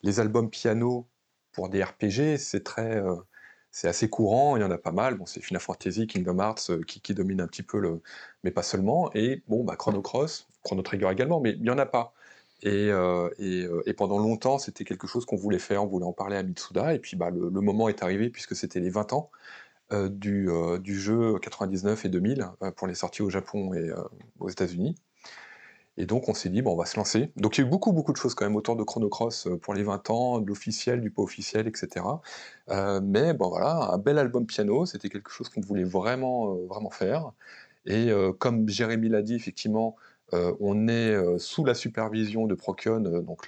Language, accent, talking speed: French, French, 230 wpm